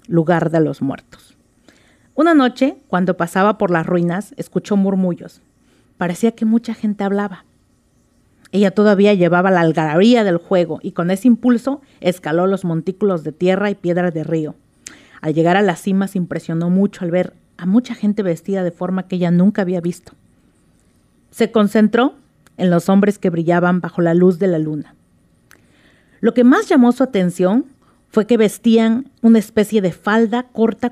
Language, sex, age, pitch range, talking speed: Spanish, female, 40-59, 175-215 Hz, 165 wpm